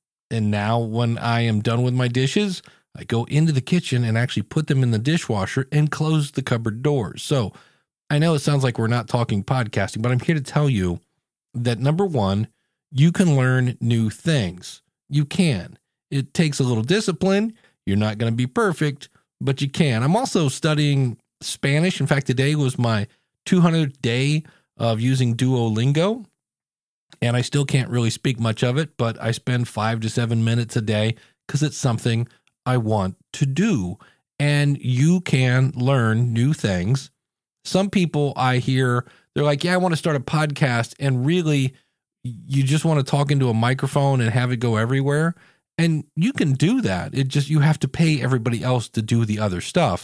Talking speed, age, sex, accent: 190 wpm, 40-59, male, American